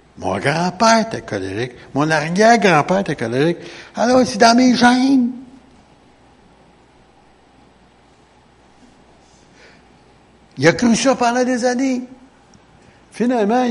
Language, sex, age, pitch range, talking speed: French, male, 70-89, 125-200 Hz, 95 wpm